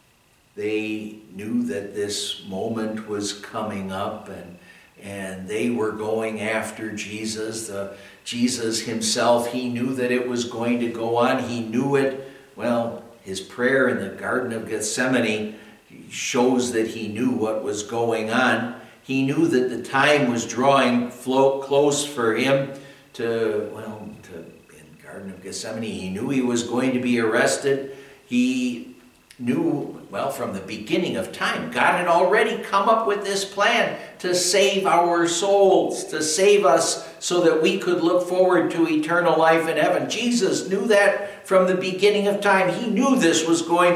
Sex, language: male, English